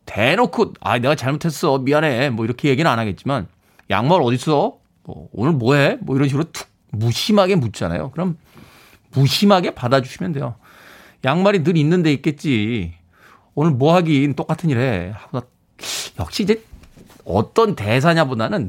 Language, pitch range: Korean, 120-175 Hz